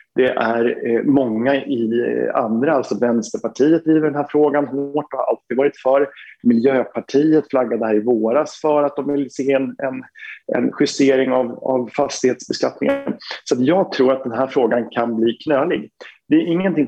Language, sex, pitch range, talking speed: Swedish, male, 115-140 Hz, 170 wpm